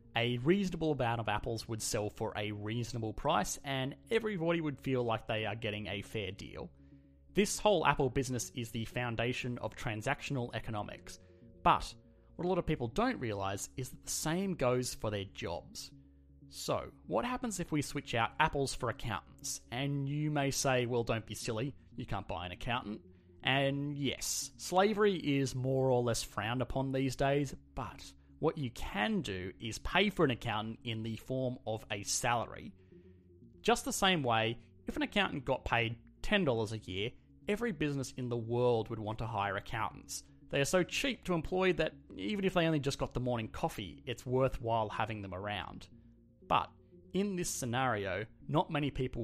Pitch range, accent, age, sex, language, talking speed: 105-140 Hz, Australian, 30-49, male, English, 180 wpm